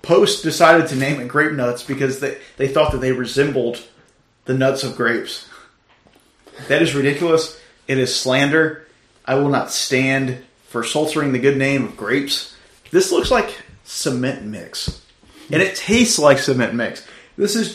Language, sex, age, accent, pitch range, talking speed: English, male, 30-49, American, 120-160 Hz, 160 wpm